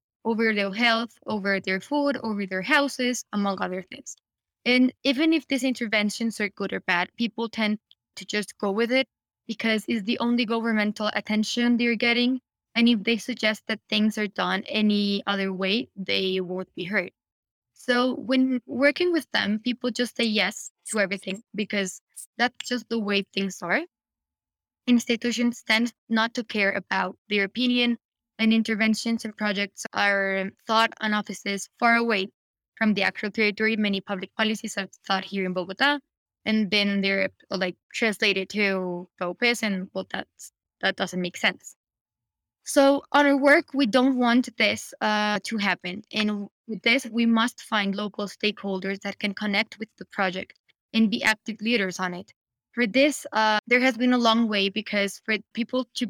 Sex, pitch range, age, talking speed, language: female, 200-240 Hz, 20-39, 165 wpm, English